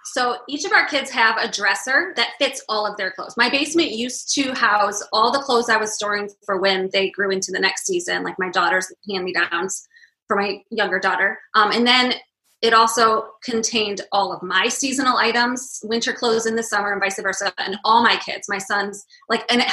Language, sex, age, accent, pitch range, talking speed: English, female, 20-39, American, 195-235 Hz, 205 wpm